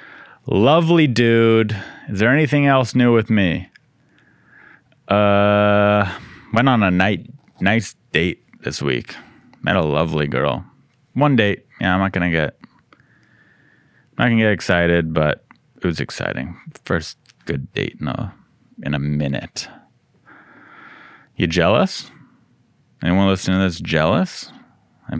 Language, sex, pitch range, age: English, male, 85-110 Hz, 30-49